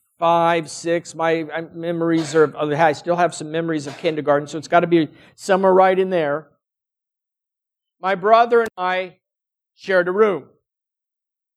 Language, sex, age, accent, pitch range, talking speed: English, male, 50-69, American, 170-245 Hz, 145 wpm